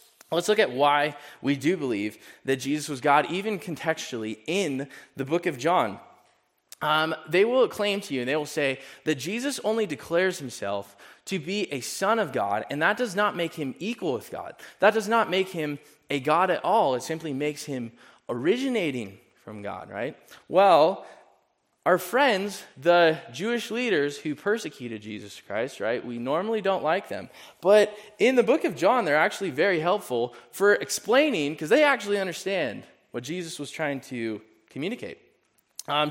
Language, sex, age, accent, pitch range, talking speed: English, male, 20-39, American, 140-215 Hz, 175 wpm